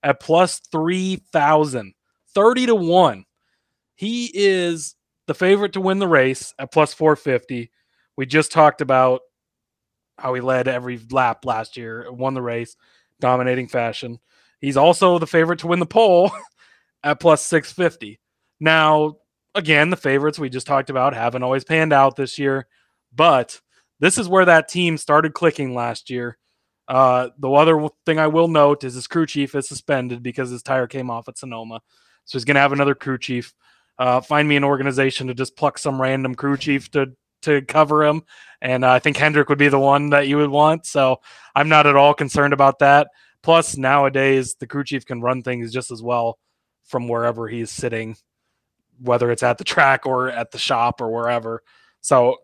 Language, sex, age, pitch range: English, male, 20-39, 125-155 Hz